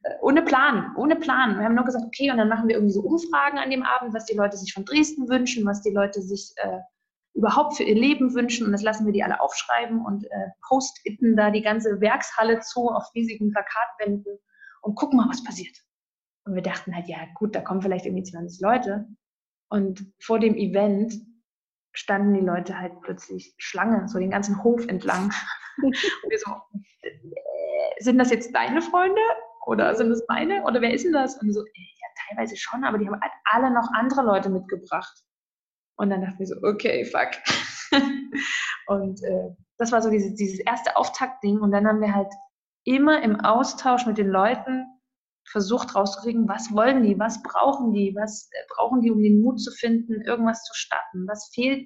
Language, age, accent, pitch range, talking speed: German, 20-39, German, 200-255 Hz, 190 wpm